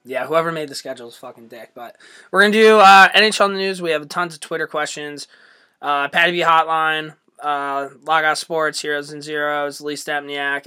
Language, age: English, 20-39